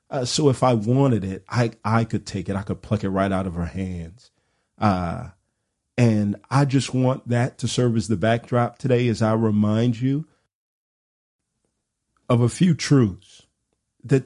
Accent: American